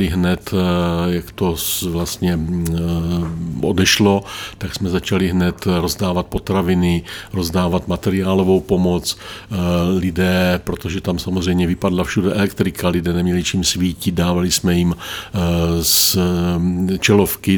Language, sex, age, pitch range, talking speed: Czech, male, 50-69, 90-95 Hz, 100 wpm